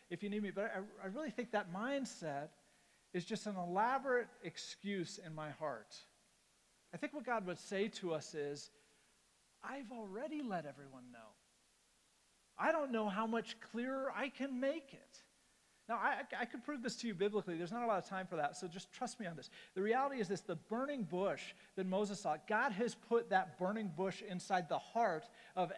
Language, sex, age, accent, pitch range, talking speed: English, male, 40-59, American, 180-230 Hz, 200 wpm